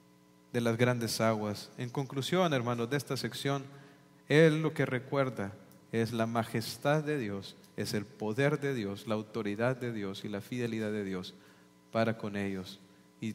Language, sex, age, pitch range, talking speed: English, male, 40-59, 110-140 Hz, 165 wpm